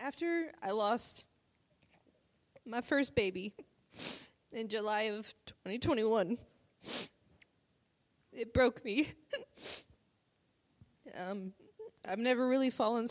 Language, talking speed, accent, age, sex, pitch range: English, 80 wpm, American, 20-39, female, 195-255 Hz